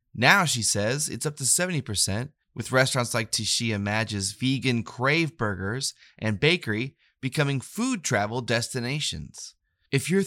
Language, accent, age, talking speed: English, American, 20-39, 135 wpm